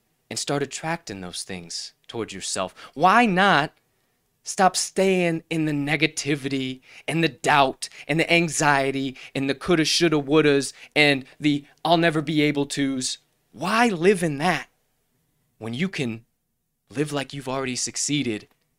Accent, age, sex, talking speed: American, 20-39, male, 140 wpm